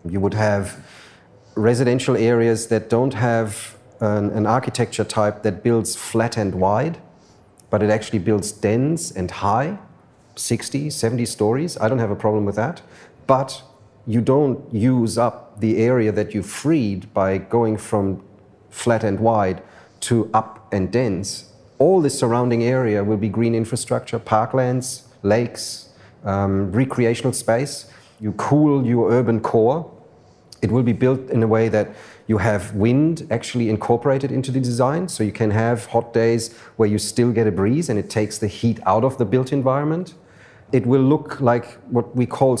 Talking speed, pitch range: 165 wpm, 105-130 Hz